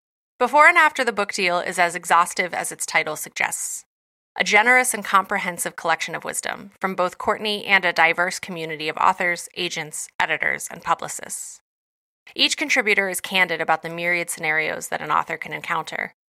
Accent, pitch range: American, 165-205 Hz